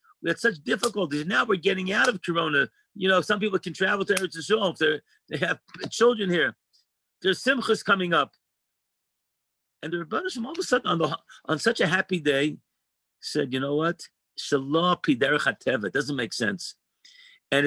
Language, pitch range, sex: English, 155-200 Hz, male